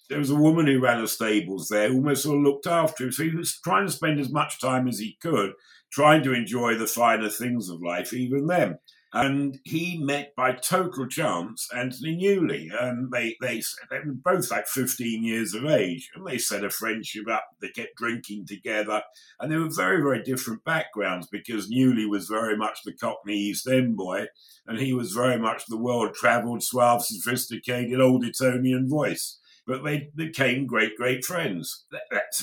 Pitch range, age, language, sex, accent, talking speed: 105-135 Hz, 50-69, English, male, British, 190 wpm